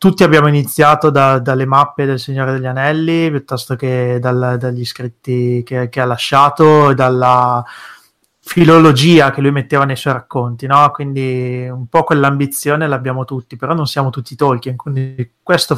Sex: male